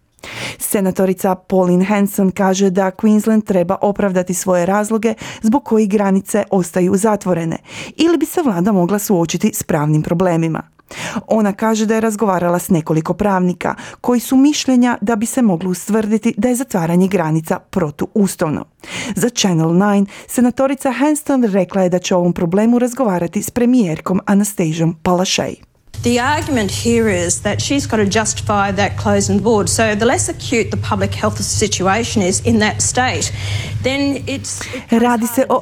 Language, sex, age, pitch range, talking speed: Croatian, female, 30-49, 175-220 Hz, 110 wpm